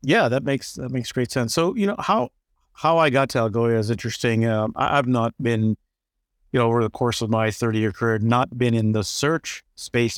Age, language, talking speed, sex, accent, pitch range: 50-69, English, 230 wpm, male, American, 110-130 Hz